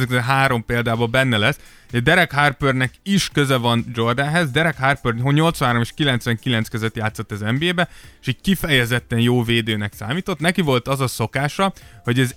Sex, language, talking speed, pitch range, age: male, Hungarian, 175 wpm, 115-145 Hz, 20-39